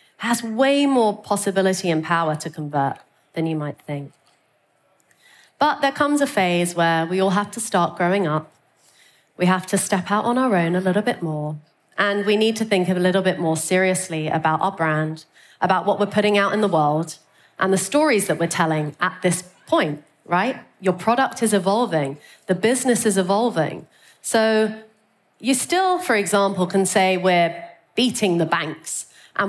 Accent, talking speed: British, 180 wpm